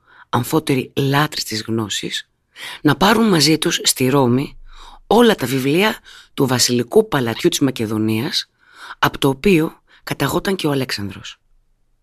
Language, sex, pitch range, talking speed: Greek, female, 125-170 Hz, 125 wpm